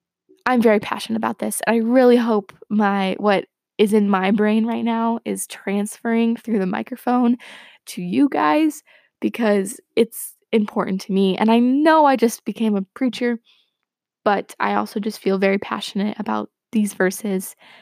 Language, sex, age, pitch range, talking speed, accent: English, female, 20-39, 205-245 Hz, 160 wpm, American